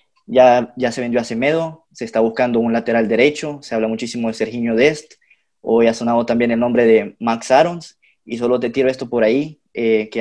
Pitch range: 120-145 Hz